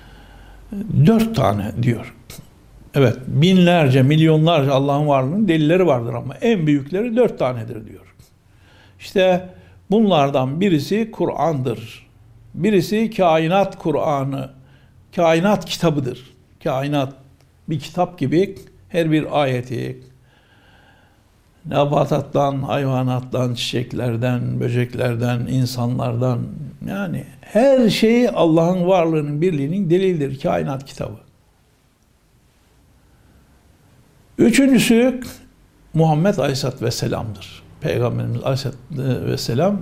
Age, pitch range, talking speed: 60-79, 120-180 Hz, 85 wpm